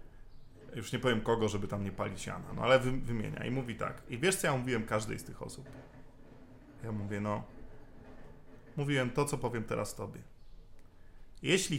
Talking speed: 175 wpm